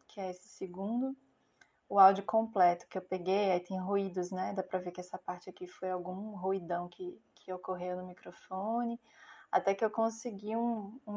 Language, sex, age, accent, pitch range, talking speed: Portuguese, female, 20-39, Brazilian, 190-240 Hz, 190 wpm